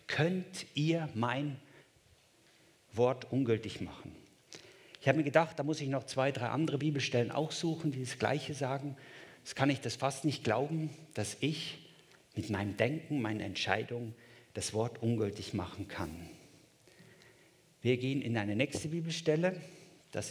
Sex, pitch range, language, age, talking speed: male, 120-160 Hz, German, 50-69, 150 wpm